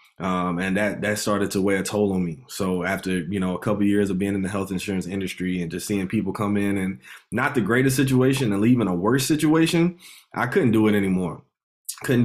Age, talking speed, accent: 20-39, 230 wpm, American